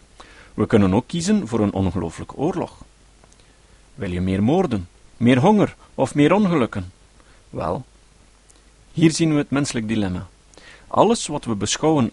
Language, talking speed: Dutch, 140 wpm